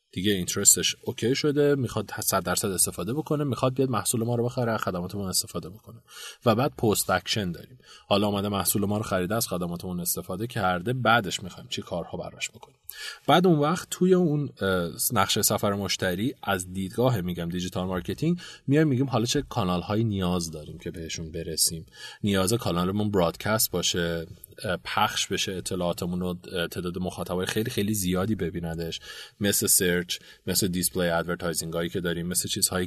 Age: 30-49